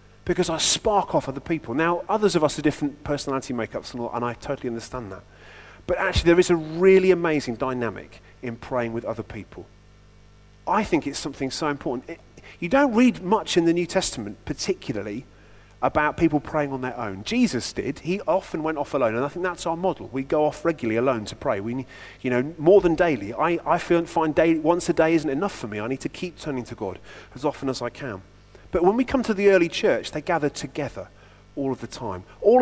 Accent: British